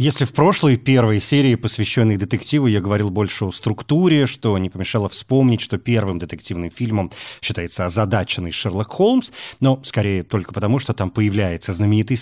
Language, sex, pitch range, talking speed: Russian, male, 105-145 Hz, 155 wpm